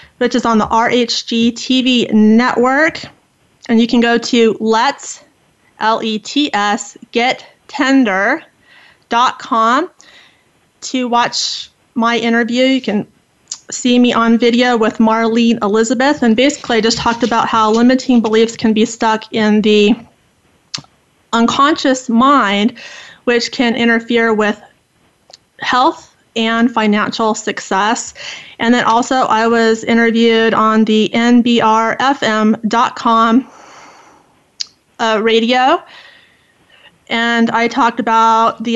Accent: American